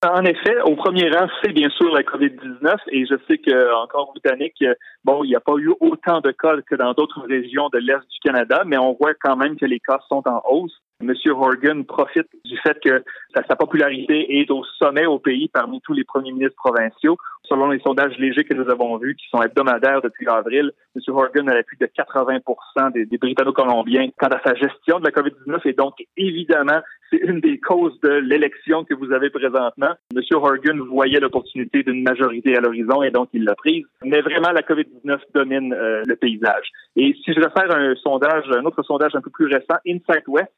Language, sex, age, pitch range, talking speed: French, male, 30-49, 130-165 Hz, 210 wpm